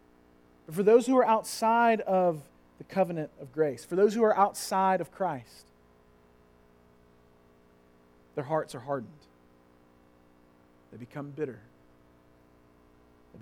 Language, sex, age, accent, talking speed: English, male, 40-59, American, 115 wpm